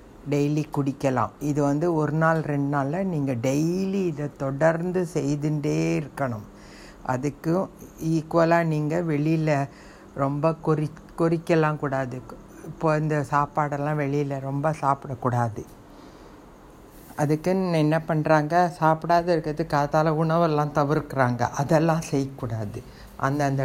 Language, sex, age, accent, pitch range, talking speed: Tamil, female, 60-79, native, 135-160 Hz, 100 wpm